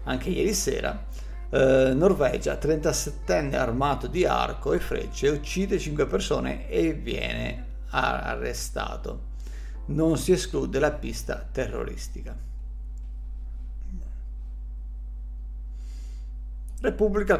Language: Italian